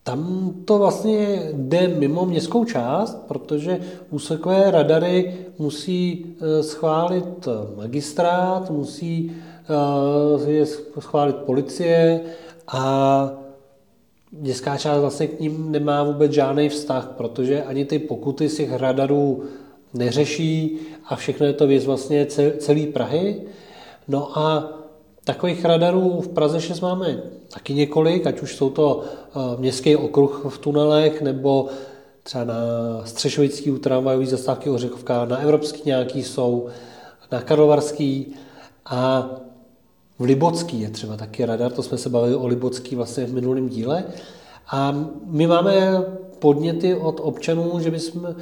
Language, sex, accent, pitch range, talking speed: Czech, male, native, 135-165 Hz, 120 wpm